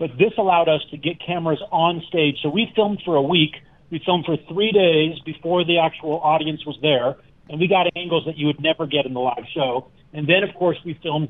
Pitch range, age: 145-180 Hz, 40-59